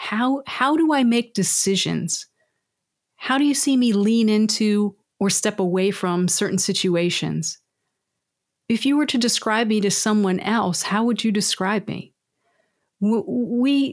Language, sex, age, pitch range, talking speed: English, female, 40-59, 190-245 Hz, 145 wpm